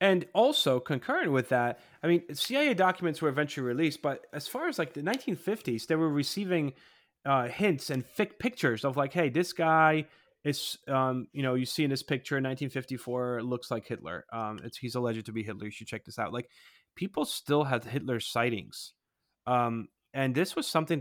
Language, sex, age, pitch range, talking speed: English, male, 30-49, 120-165 Hz, 195 wpm